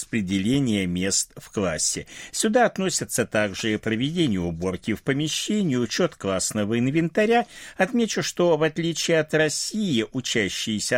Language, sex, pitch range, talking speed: Russian, male, 105-165 Hz, 115 wpm